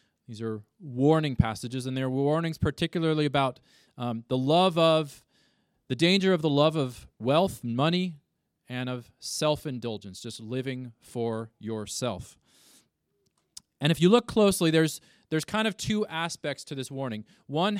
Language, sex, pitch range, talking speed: English, male, 115-155 Hz, 150 wpm